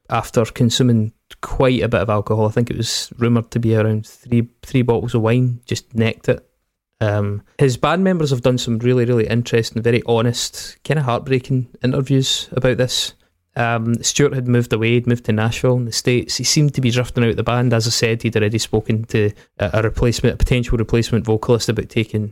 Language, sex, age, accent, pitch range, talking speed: English, male, 20-39, British, 110-125 Hz, 205 wpm